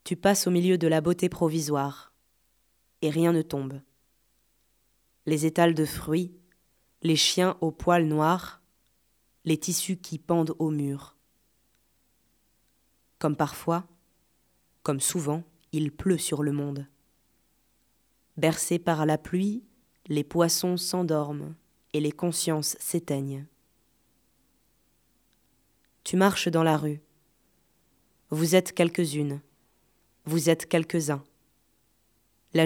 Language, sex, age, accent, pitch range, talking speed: French, female, 20-39, French, 145-175 Hz, 110 wpm